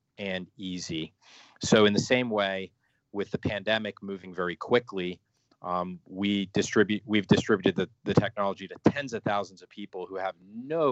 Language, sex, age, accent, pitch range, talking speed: English, male, 30-49, American, 95-120 Hz, 175 wpm